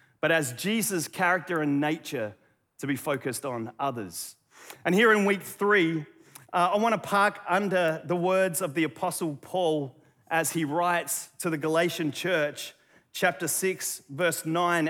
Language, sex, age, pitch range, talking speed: English, male, 30-49, 145-185 Hz, 155 wpm